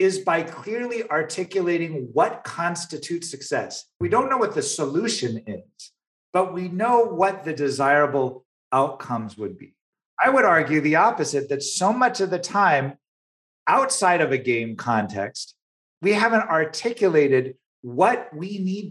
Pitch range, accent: 135-185 Hz, American